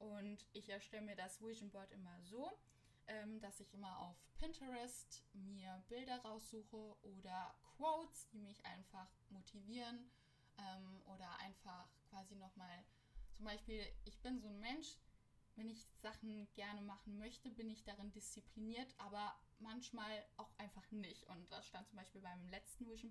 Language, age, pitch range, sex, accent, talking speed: German, 10-29, 195-230 Hz, female, German, 155 wpm